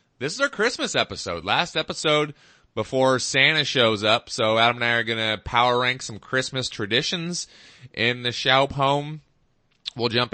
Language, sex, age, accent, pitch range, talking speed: English, male, 30-49, American, 100-130 Hz, 170 wpm